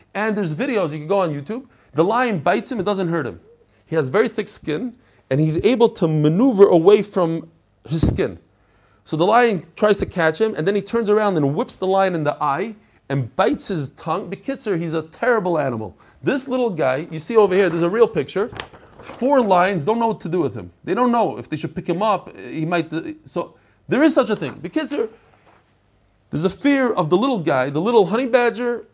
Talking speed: 225 wpm